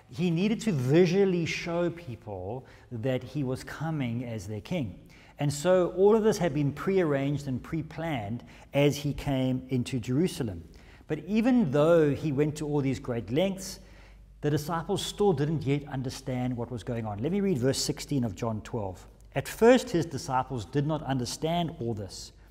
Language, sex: English, male